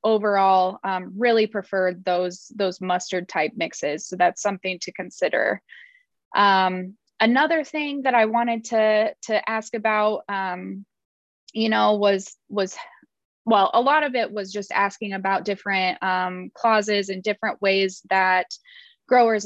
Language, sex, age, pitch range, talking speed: English, female, 20-39, 185-220 Hz, 140 wpm